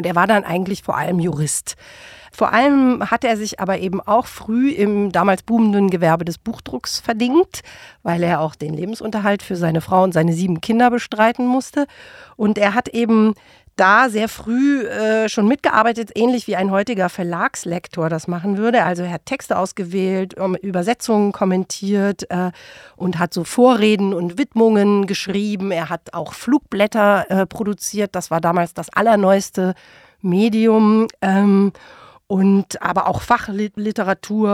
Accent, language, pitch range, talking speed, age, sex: German, German, 180-225 Hz, 155 wpm, 50-69, female